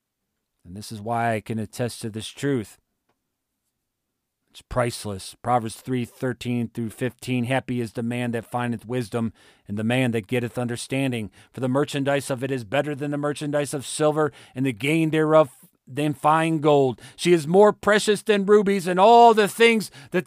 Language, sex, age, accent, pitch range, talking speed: English, male, 40-59, American, 125-170 Hz, 180 wpm